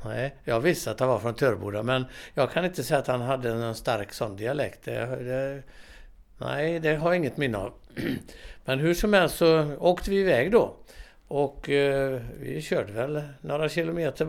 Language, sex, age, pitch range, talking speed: Swedish, male, 60-79, 125-160 Hz, 190 wpm